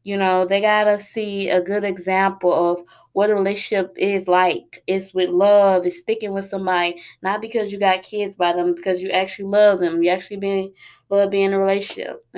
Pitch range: 185-205 Hz